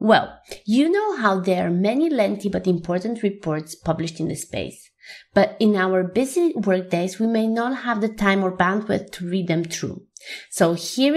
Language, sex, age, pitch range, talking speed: English, female, 20-39, 170-225 Hz, 185 wpm